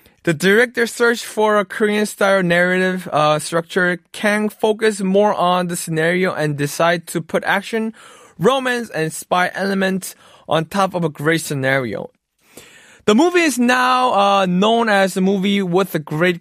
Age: 20-39